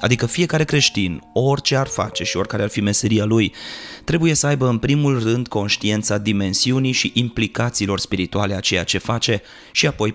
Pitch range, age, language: 105-125 Hz, 30-49, Romanian